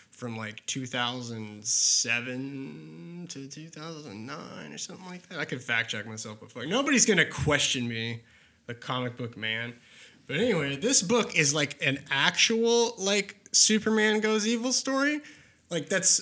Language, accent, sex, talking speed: English, American, male, 145 wpm